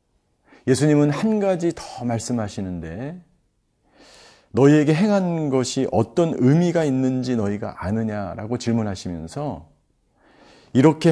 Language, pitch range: Korean, 105-145 Hz